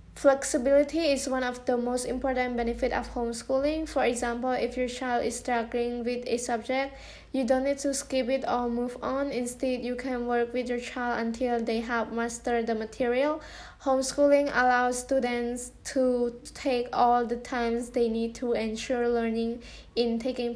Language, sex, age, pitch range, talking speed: English, female, 10-29, 240-260 Hz, 165 wpm